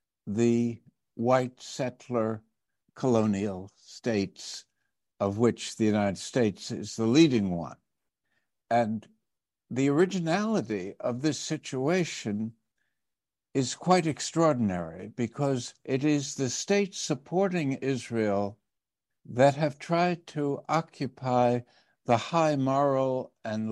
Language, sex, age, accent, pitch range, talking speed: English, male, 60-79, American, 110-140 Hz, 100 wpm